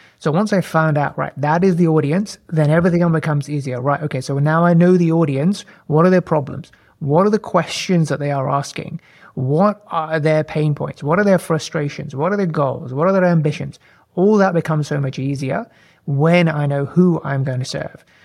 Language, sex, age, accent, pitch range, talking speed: English, male, 30-49, British, 145-170 Hz, 215 wpm